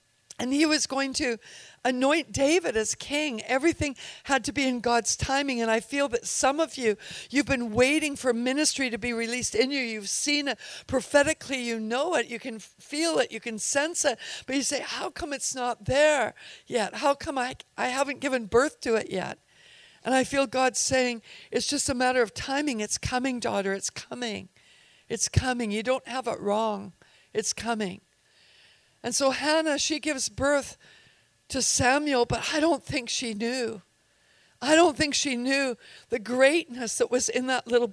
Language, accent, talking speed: English, American, 185 wpm